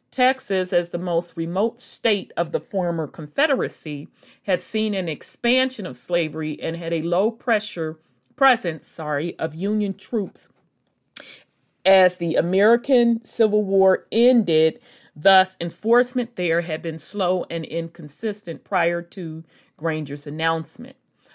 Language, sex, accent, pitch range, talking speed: English, female, American, 170-225 Hz, 125 wpm